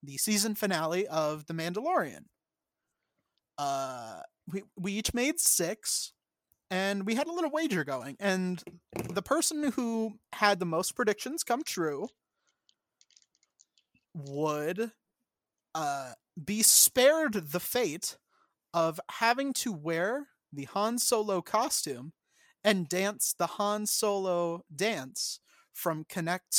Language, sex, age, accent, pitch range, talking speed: English, male, 30-49, American, 170-230 Hz, 115 wpm